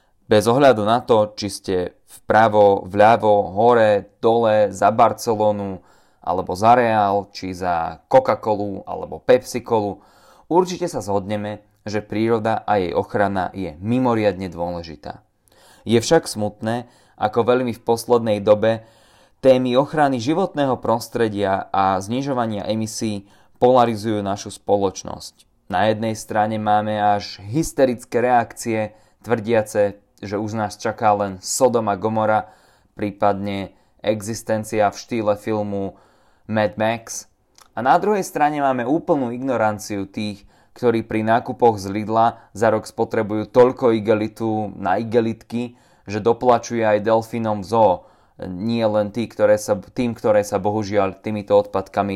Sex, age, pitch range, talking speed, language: male, 30-49, 100-115 Hz, 125 wpm, Slovak